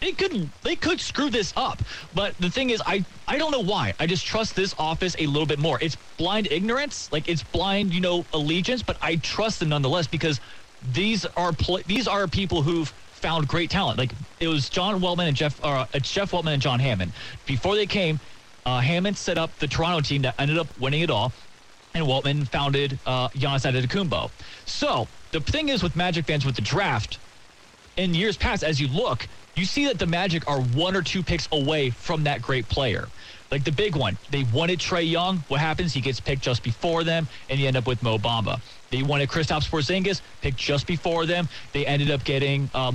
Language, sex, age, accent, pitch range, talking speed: English, male, 30-49, American, 135-180 Hz, 215 wpm